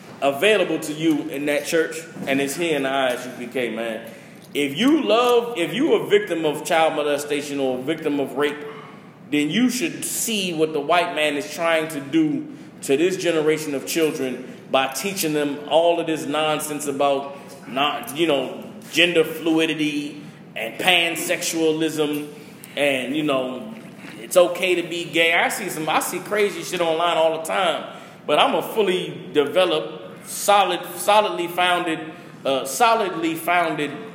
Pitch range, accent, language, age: 150-200 Hz, American, English, 20-39